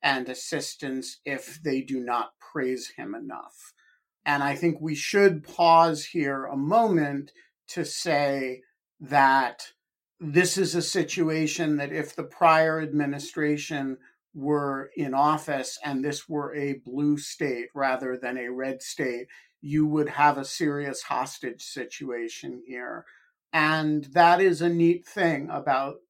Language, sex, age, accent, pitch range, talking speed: English, male, 50-69, American, 135-160 Hz, 135 wpm